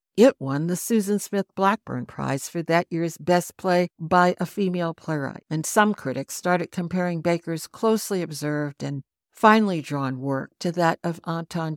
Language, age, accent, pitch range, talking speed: English, 60-79, American, 140-185 Hz, 165 wpm